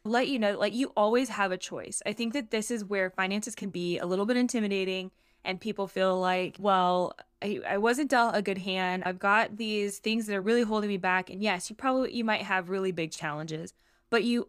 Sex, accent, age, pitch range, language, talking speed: female, American, 20-39, 180-210 Hz, English, 230 wpm